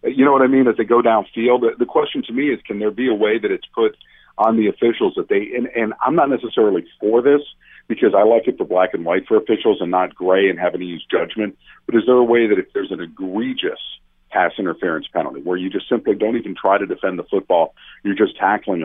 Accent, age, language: American, 50-69, English